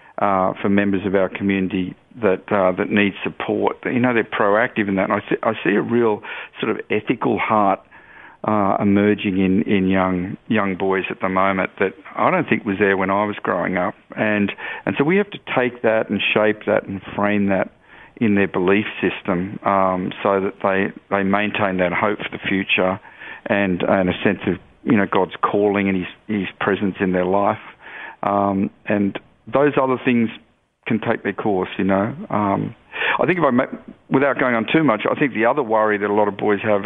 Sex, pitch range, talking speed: male, 100-110 Hz, 205 wpm